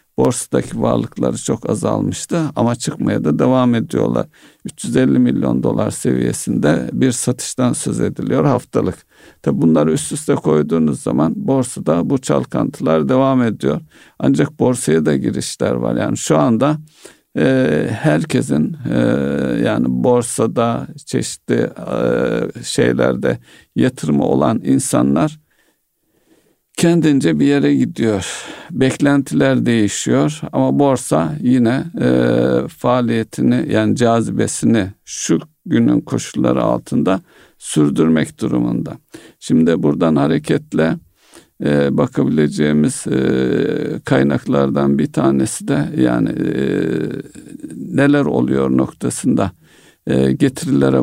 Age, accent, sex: 50-69, native, male